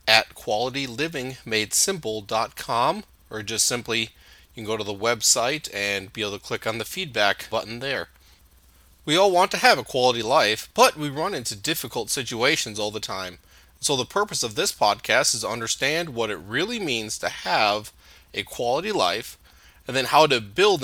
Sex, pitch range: male, 105-130 Hz